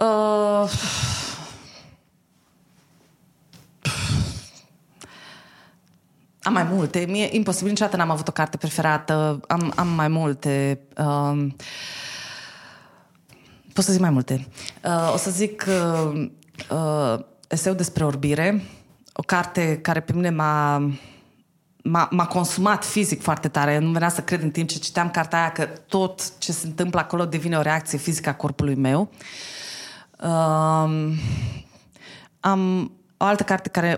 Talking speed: 125 wpm